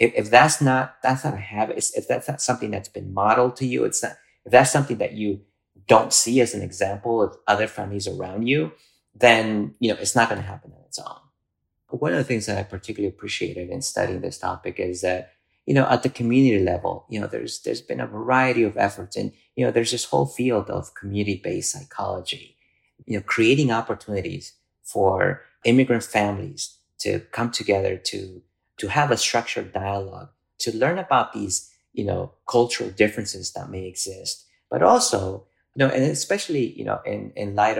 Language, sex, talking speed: English, male, 195 wpm